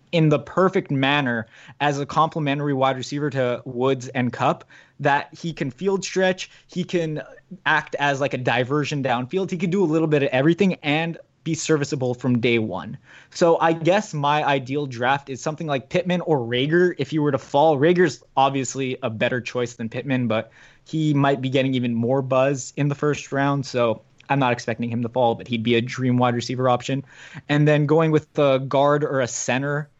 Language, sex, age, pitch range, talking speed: English, male, 20-39, 130-155 Hz, 200 wpm